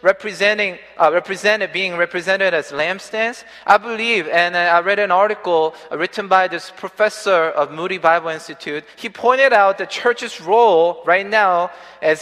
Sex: male